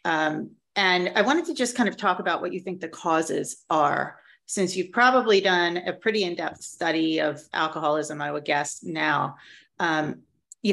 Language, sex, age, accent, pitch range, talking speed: English, female, 30-49, American, 165-210 Hz, 180 wpm